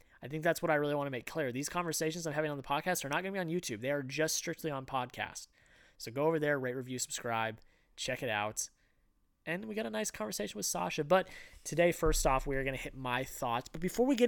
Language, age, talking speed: English, 20-39, 265 wpm